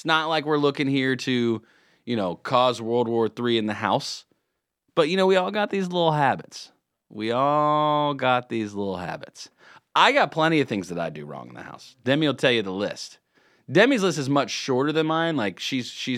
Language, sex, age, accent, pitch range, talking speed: English, male, 30-49, American, 95-140 Hz, 215 wpm